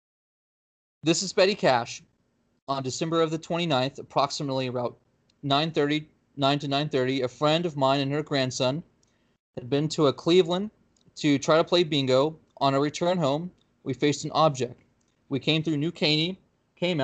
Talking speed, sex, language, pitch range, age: 160 wpm, male, English, 130-155 Hz, 20-39